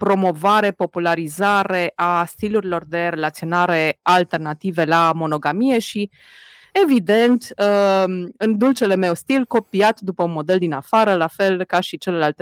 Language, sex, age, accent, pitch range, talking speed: Romanian, female, 20-39, native, 170-255 Hz, 125 wpm